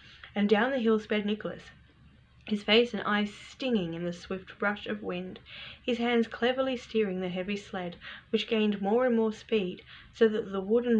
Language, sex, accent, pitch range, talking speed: English, female, Australian, 195-255 Hz, 185 wpm